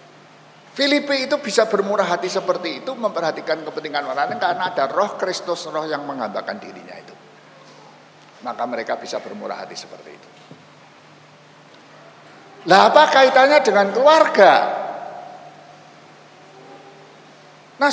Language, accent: Indonesian, native